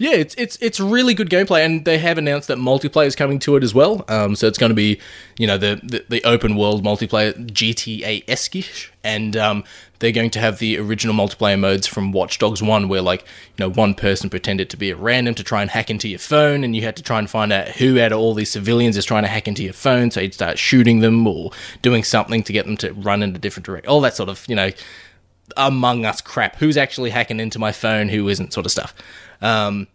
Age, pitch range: 20-39, 105-125 Hz